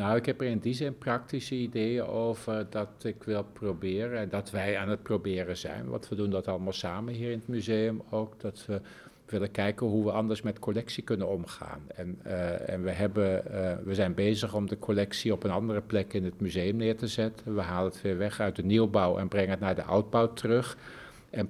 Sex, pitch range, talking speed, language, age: male, 100-115 Hz, 225 wpm, Dutch, 50-69